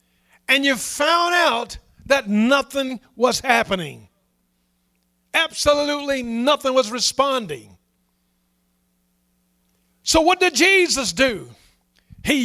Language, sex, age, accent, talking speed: English, male, 50-69, American, 85 wpm